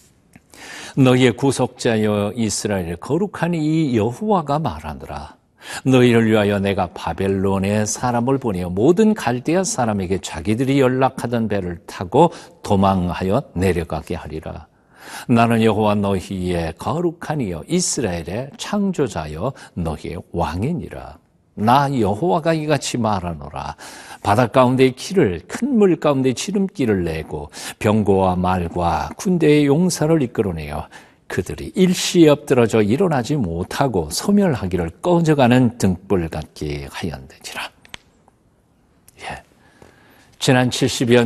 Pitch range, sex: 90-140 Hz, male